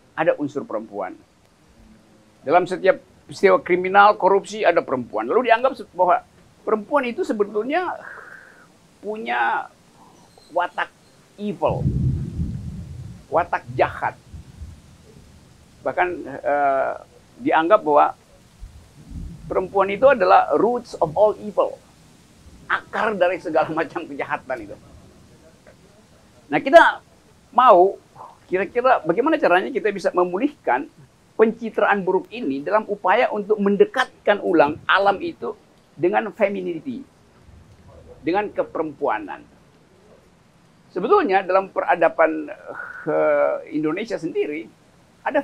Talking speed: 90 wpm